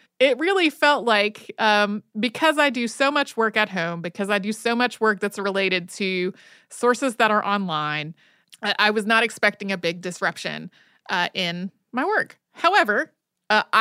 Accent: American